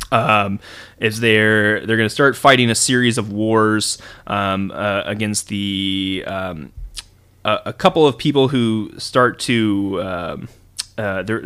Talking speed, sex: 145 wpm, male